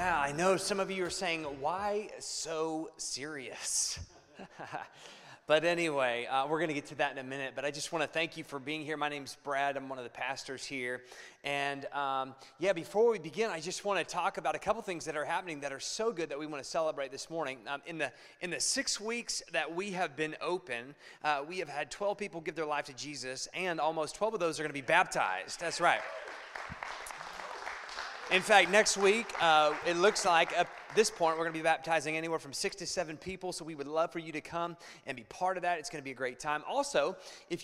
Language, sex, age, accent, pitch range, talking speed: English, male, 30-49, American, 145-180 Hz, 240 wpm